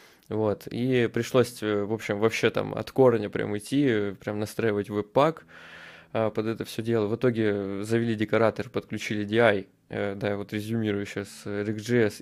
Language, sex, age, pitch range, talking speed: Russian, male, 20-39, 95-115 Hz, 145 wpm